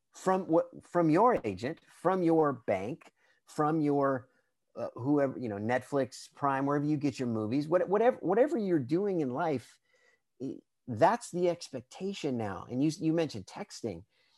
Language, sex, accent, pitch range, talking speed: English, male, American, 120-165 Hz, 155 wpm